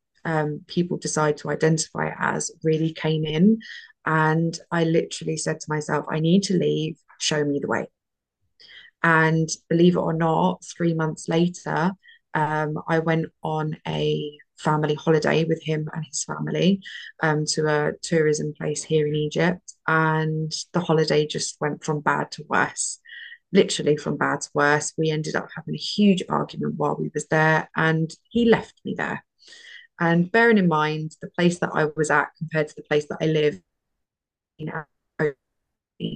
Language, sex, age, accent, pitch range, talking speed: English, female, 20-39, British, 155-175 Hz, 165 wpm